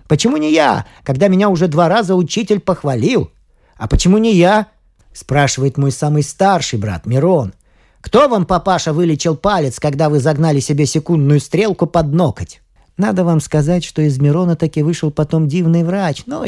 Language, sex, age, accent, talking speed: Russian, male, 40-59, native, 165 wpm